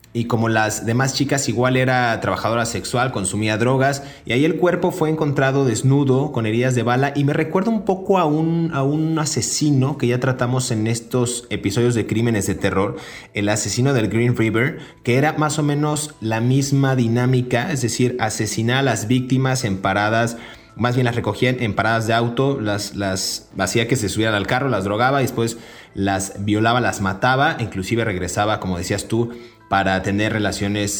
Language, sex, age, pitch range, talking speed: Spanish, male, 30-49, 105-135 Hz, 185 wpm